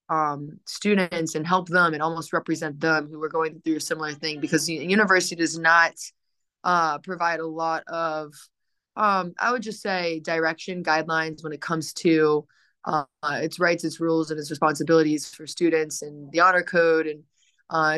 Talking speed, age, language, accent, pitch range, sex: 175 wpm, 20-39, English, American, 160-180 Hz, female